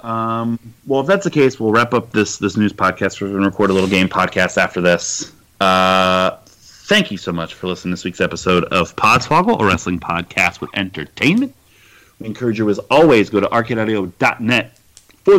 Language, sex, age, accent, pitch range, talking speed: English, male, 30-49, American, 95-115 Hz, 185 wpm